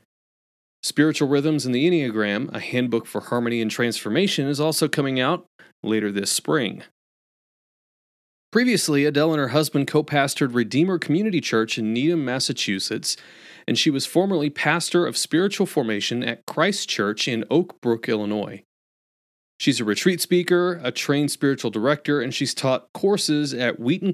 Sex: male